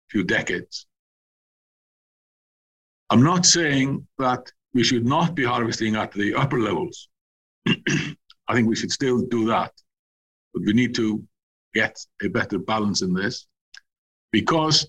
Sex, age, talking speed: male, 50-69, 135 wpm